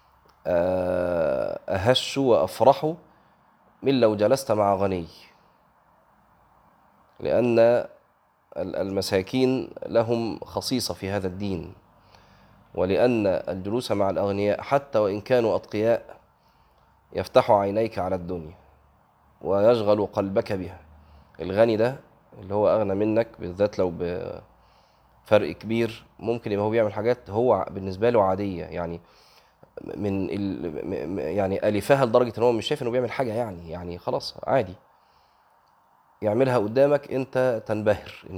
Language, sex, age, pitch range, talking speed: Arabic, male, 20-39, 95-125 Hz, 110 wpm